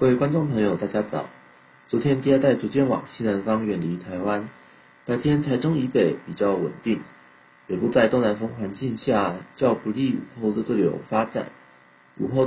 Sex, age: male, 40-59